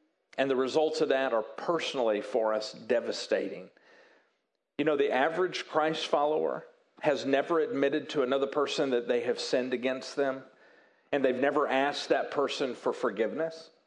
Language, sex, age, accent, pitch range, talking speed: English, male, 50-69, American, 150-245 Hz, 155 wpm